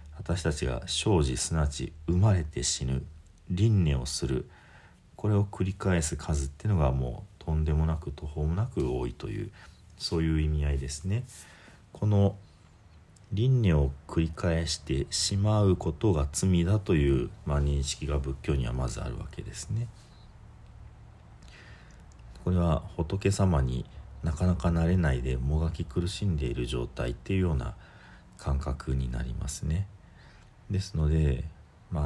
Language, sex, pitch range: Japanese, male, 70-90 Hz